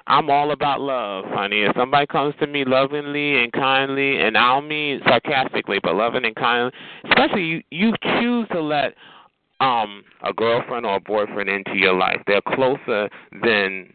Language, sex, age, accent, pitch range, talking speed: English, male, 30-49, American, 110-175 Hz, 170 wpm